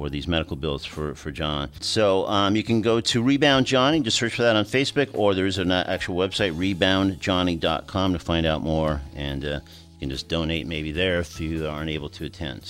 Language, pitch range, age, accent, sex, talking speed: English, 80-110 Hz, 50-69, American, male, 215 wpm